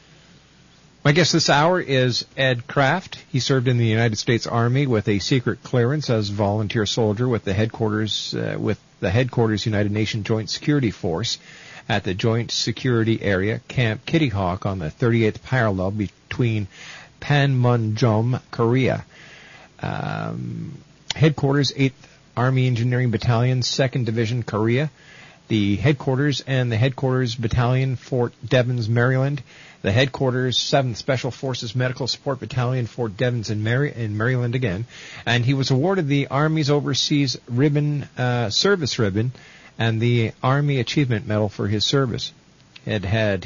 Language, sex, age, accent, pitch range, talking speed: English, male, 50-69, American, 110-140 Hz, 140 wpm